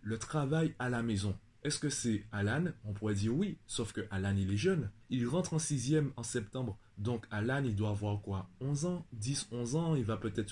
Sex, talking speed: male, 220 wpm